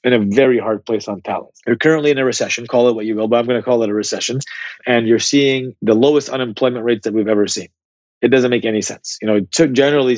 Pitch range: 110-130 Hz